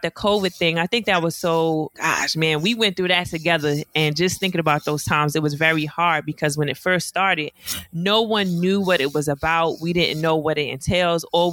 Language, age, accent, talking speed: English, 20-39, American, 230 wpm